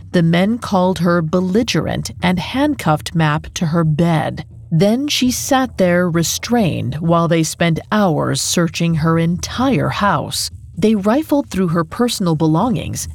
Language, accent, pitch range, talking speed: English, American, 160-210 Hz, 135 wpm